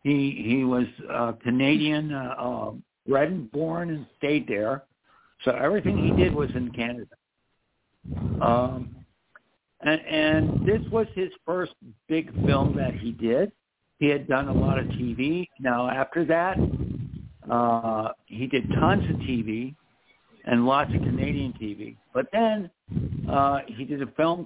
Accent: American